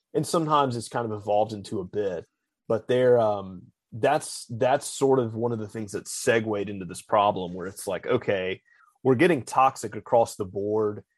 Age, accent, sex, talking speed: 30-49, American, male, 190 wpm